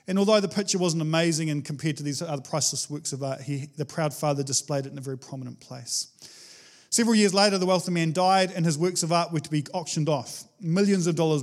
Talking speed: 235 wpm